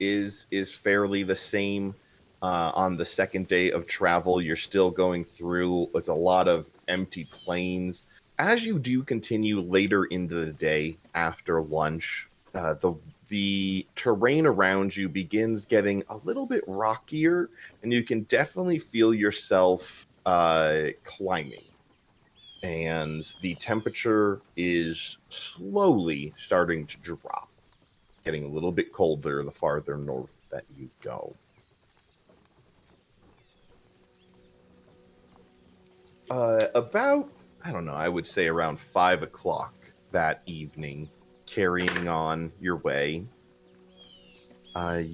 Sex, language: male, English